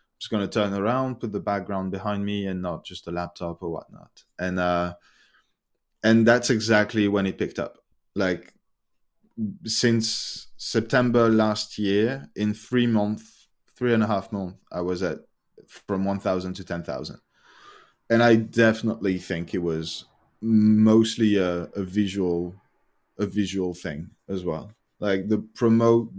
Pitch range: 95-110 Hz